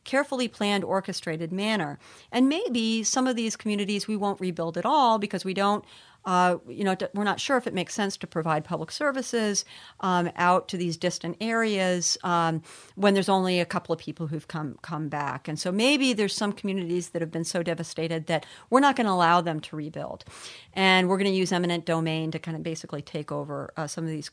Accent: American